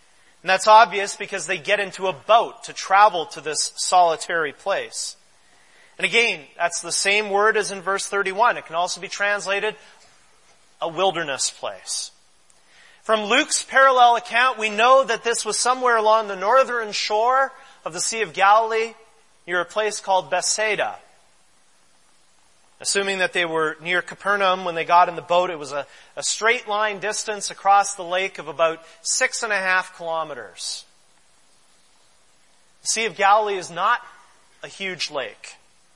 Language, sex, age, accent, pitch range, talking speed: English, male, 30-49, American, 180-235 Hz, 160 wpm